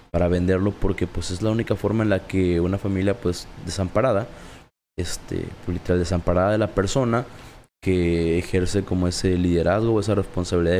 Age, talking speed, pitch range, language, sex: 20-39, 160 wpm, 90-115 Hz, Spanish, male